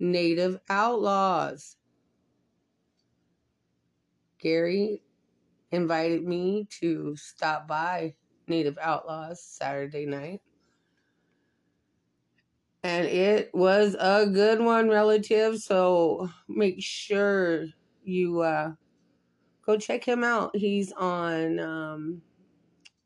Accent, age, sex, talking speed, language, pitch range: American, 30-49, female, 80 wpm, English, 135-185 Hz